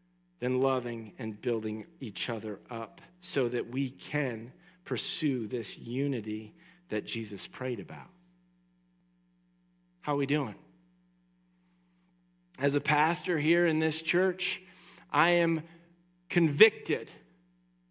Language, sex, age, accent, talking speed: English, male, 40-59, American, 105 wpm